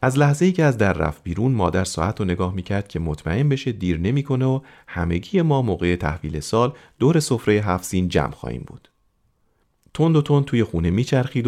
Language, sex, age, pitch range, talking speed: Persian, male, 40-59, 85-130 Hz, 185 wpm